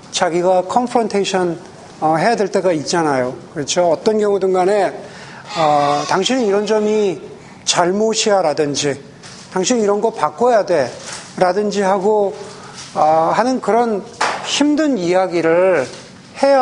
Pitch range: 185-255 Hz